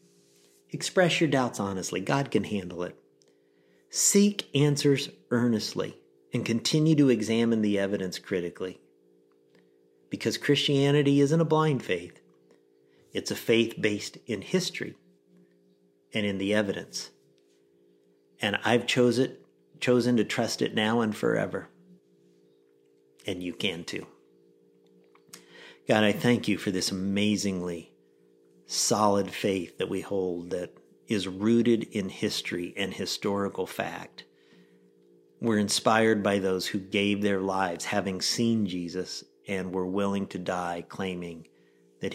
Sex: male